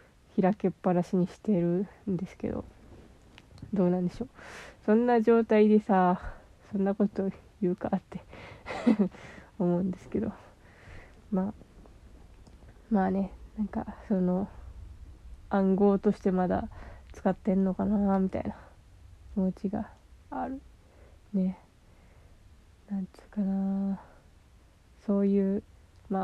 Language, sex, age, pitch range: Japanese, female, 20-39, 175-210 Hz